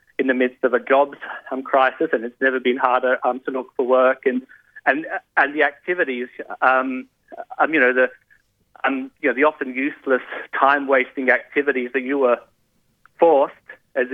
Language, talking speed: English, 180 wpm